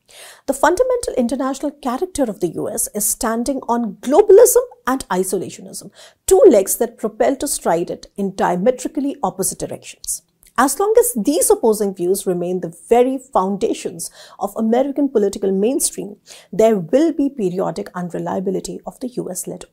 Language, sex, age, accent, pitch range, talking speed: English, female, 50-69, Indian, 195-280 Hz, 140 wpm